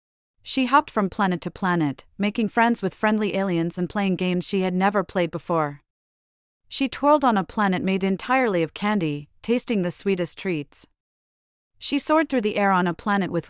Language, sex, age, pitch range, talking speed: English, female, 40-59, 165-215 Hz, 180 wpm